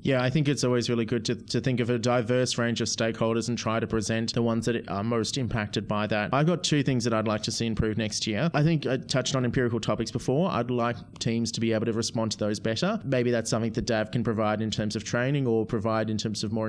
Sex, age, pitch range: male, 30-49, 110-130 Hz